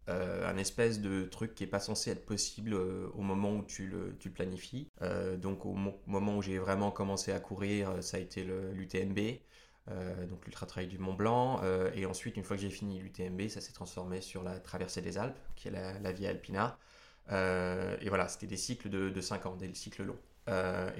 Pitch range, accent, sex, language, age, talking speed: 95-110 Hz, French, male, French, 20-39, 225 wpm